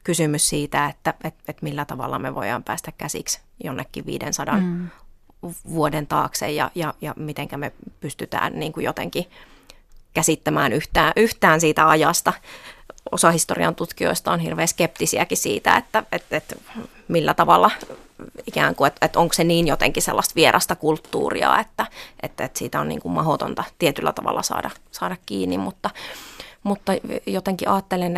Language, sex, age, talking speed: Finnish, female, 30-49, 145 wpm